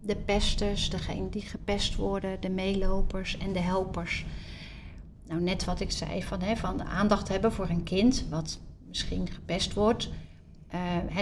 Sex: female